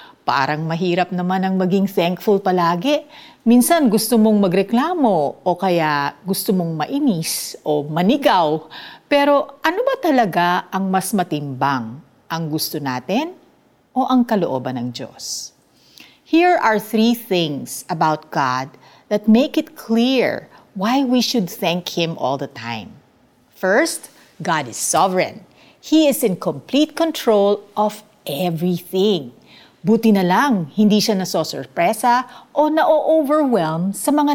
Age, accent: 50-69, native